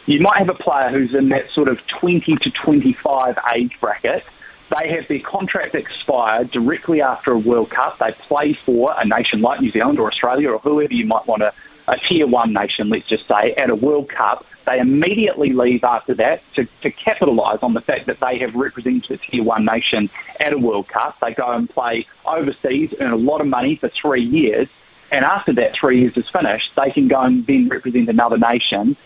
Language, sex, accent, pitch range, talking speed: English, male, Australian, 120-155 Hz, 210 wpm